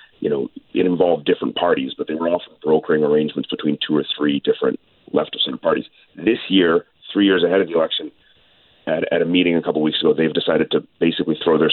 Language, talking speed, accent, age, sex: English, 220 wpm, American, 40-59, male